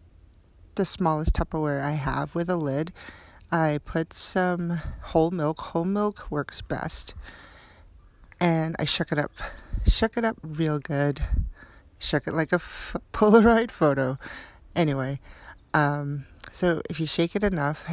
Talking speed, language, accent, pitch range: 135 wpm, English, American, 140-175 Hz